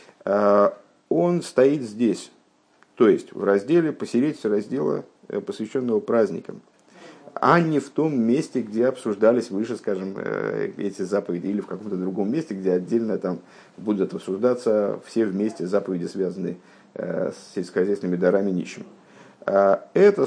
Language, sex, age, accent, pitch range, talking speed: Russian, male, 50-69, native, 105-145 Hz, 120 wpm